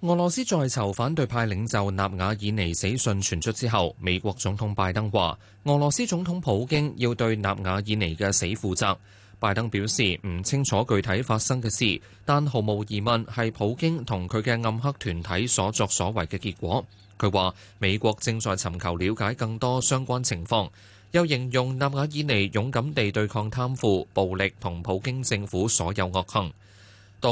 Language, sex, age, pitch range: Chinese, male, 20-39, 100-125 Hz